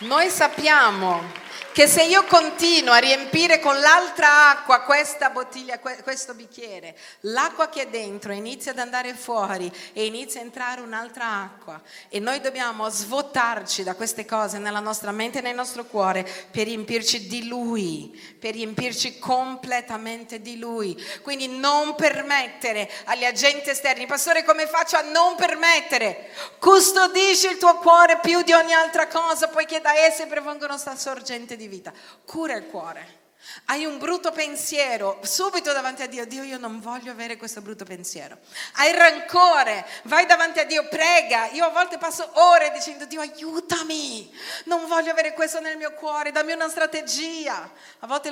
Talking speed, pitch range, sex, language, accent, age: 160 wpm, 235-315 Hz, female, Italian, native, 40-59